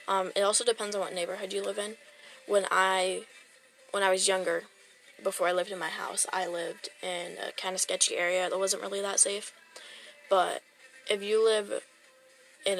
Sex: female